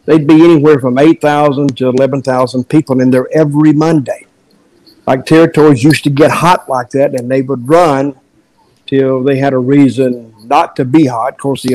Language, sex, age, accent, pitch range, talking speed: English, male, 50-69, American, 130-155 Hz, 185 wpm